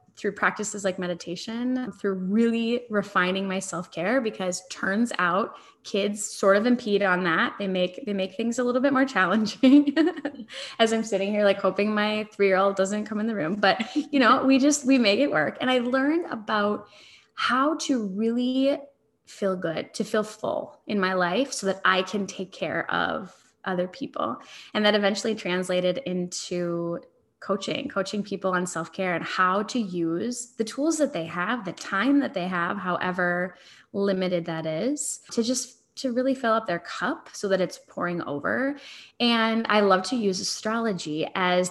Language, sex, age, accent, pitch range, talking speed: English, female, 10-29, American, 180-235 Hz, 175 wpm